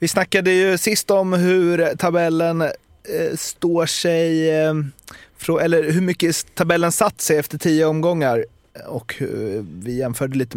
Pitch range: 125-160 Hz